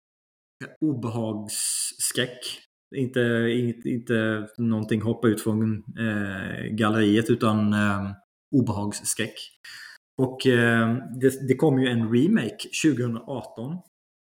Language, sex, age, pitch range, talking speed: Swedish, male, 20-39, 110-135 Hz, 95 wpm